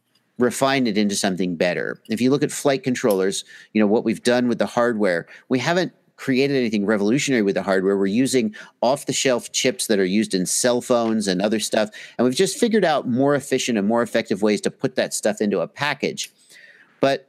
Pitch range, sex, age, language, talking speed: 105-130 Hz, male, 50-69, English, 205 wpm